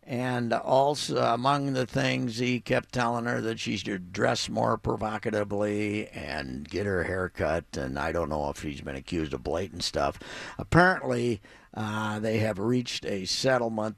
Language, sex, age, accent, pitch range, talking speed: English, male, 60-79, American, 105-125 Hz, 165 wpm